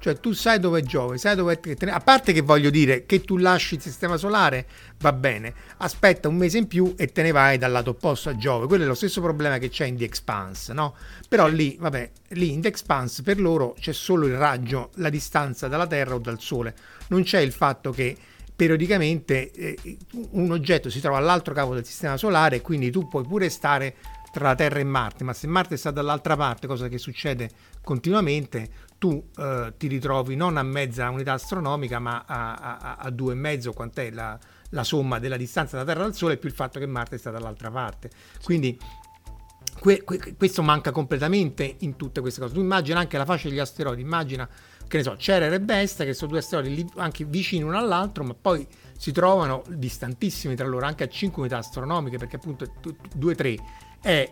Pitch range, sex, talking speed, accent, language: 125-170 Hz, male, 205 wpm, native, Italian